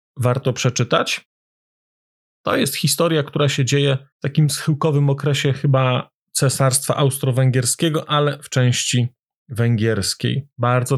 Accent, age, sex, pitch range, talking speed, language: native, 40-59, male, 130-155 Hz, 110 wpm, Polish